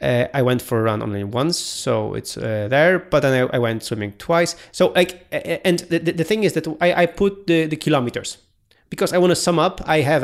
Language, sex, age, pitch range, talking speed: English, male, 30-49, 120-160 Hz, 240 wpm